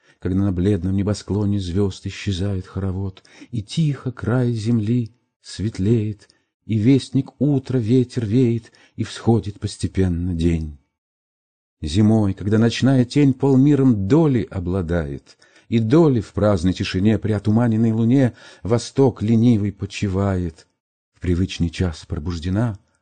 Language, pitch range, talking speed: Russian, 85-125 Hz, 110 wpm